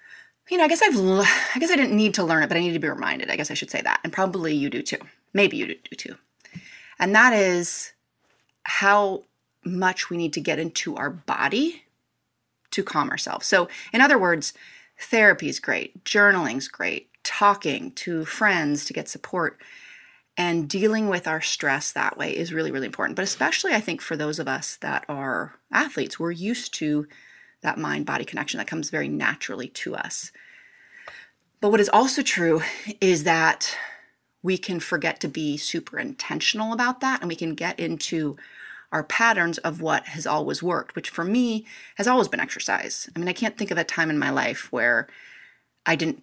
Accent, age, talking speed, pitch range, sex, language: American, 30-49, 190 wpm, 165-220 Hz, female, English